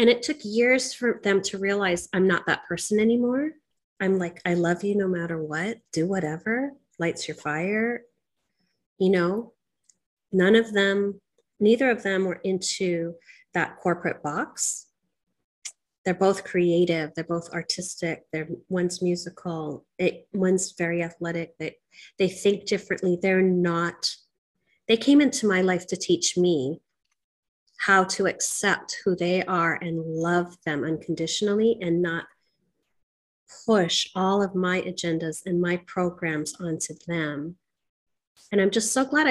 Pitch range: 170-205 Hz